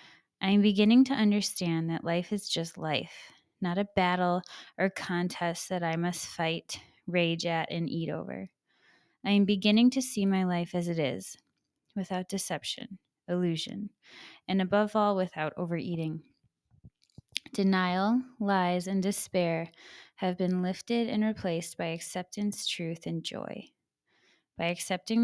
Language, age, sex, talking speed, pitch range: English, 20-39, female, 140 wpm, 170-205 Hz